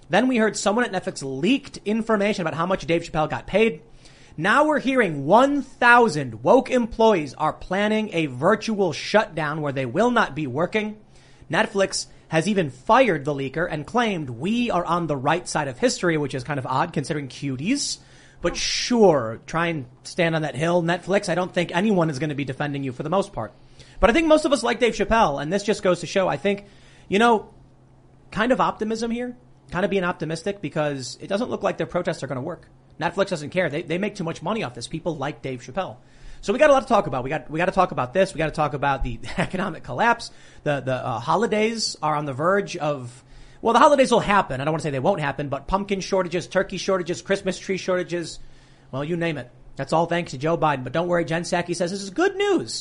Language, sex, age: English, male, 30-49